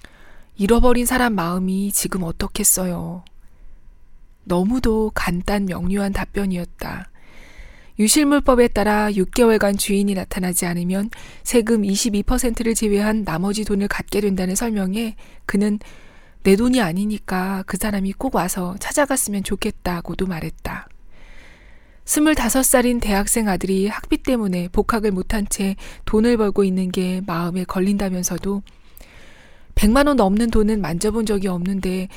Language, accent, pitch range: Korean, native, 185-225 Hz